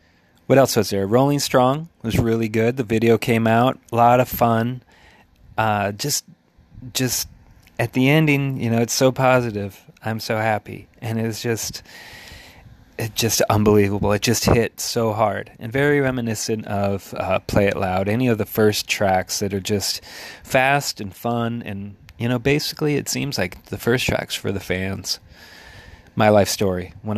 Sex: male